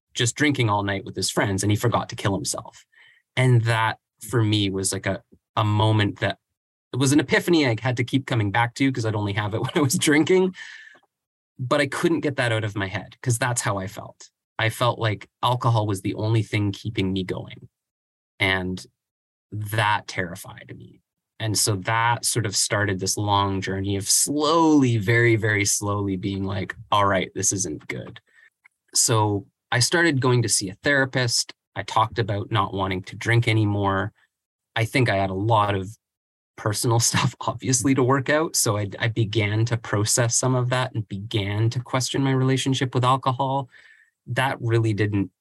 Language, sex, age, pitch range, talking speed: English, male, 20-39, 100-125 Hz, 190 wpm